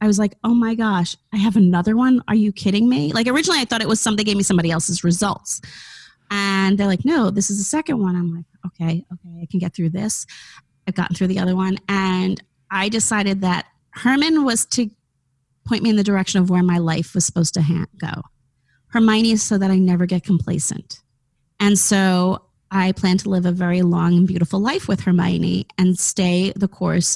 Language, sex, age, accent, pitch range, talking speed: English, female, 30-49, American, 175-205 Hz, 215 wpm